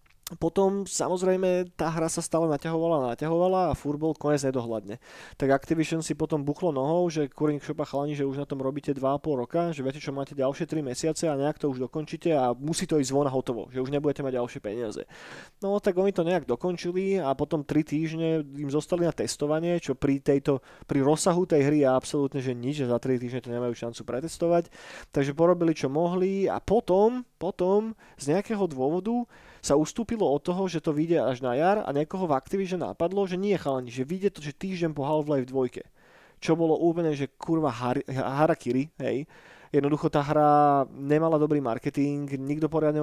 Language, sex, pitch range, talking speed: Slovak, male, 135-165 Hz, 195 wpm